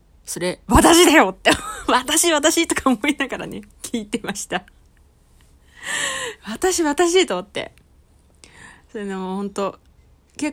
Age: 20-39